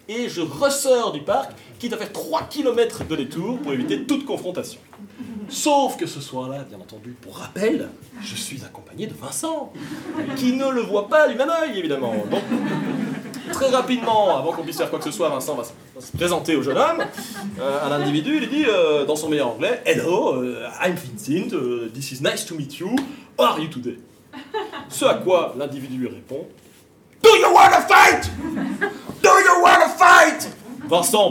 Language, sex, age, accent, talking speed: French, male, 30-49, French, 180 wpm